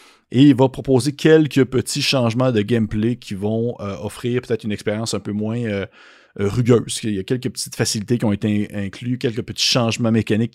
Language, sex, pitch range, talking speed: French, male, 100-125 Hz, 200 wpm